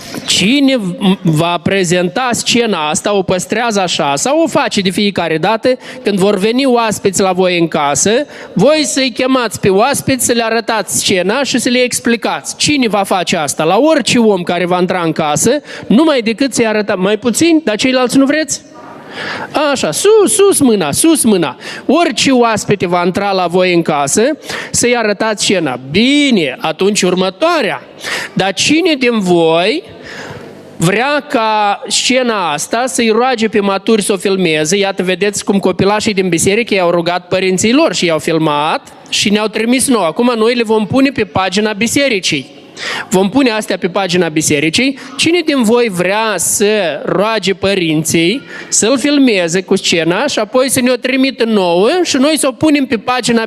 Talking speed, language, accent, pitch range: 165 wpm, Romanian, native, 185-255 Hz